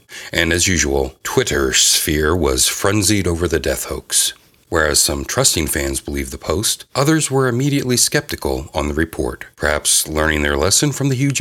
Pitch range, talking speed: 80-125 Hz, 165 wpm